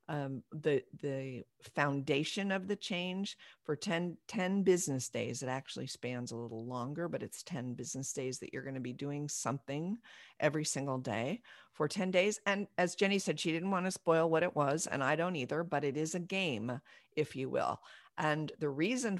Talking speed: 195 wpm